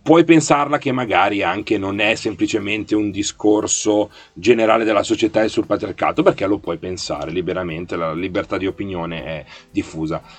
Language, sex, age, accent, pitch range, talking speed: Italian, male, 30-49, native, 90-135 Hz, 155 wpm